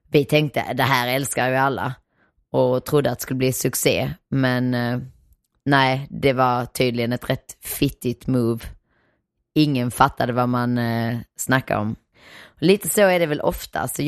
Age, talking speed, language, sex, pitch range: 20-39, 155 wpm, Swedish, female, 125-145 Hz